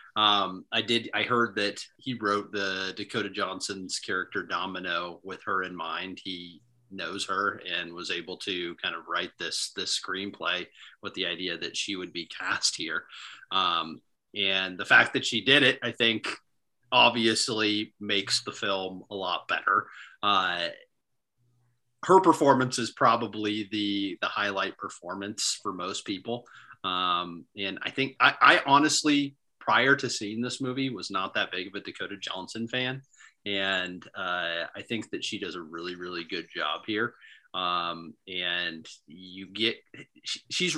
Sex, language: male, English